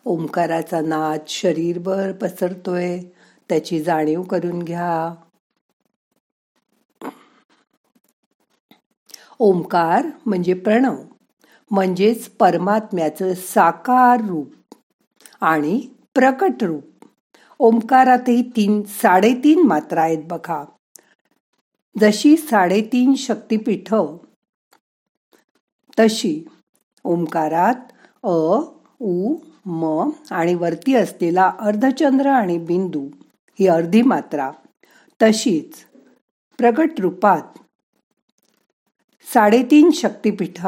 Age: 50-69